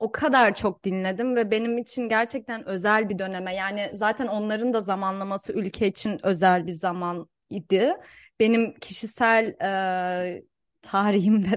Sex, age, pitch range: female, 20-39, 190-245 Hz